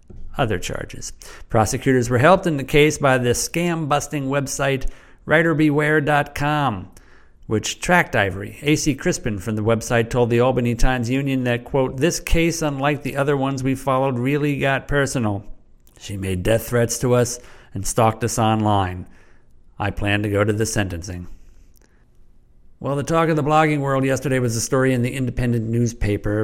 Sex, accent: male, American